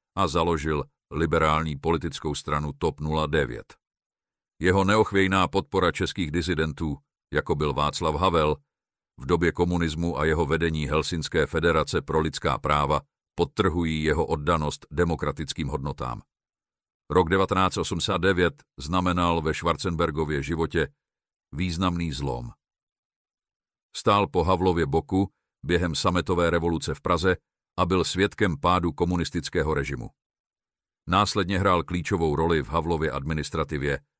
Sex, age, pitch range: male, 50-69, 75-90 Hz